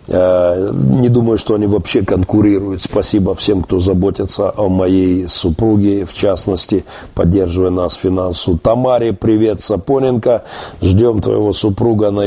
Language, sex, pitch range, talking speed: Russian, male, 100-120 Hz, 120 wpm